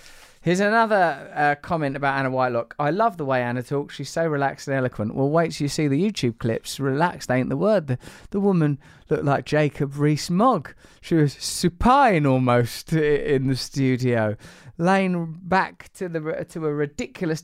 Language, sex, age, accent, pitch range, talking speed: English, male, 20-39, British, 130-170 Hz, 170 wpm